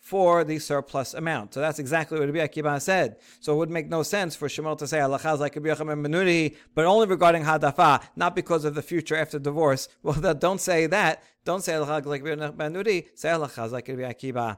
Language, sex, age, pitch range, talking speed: English, male, 40-59, 150-190 Hz, 165 wpm